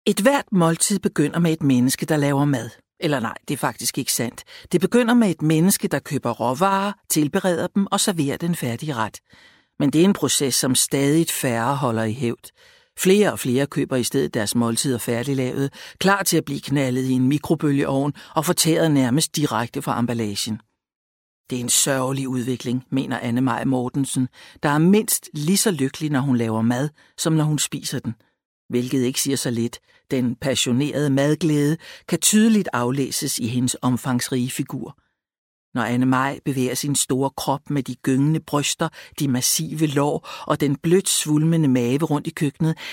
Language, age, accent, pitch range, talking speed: Danish, 60-79, native, 130-165 Hz, 175 wpm